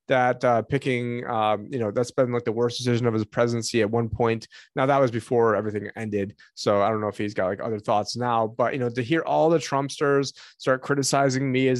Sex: male